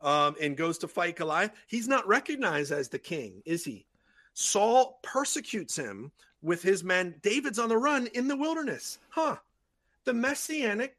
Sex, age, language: male, 40-59, English